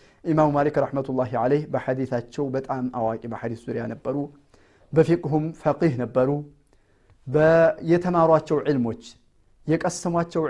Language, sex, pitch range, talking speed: Amharic, male, 120-155 Hz, 90 wpm